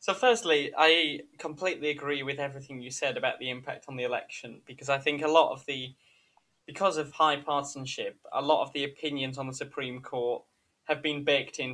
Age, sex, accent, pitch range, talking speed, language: 20-39, male, British, 130-155 Hz, 200 wpm, English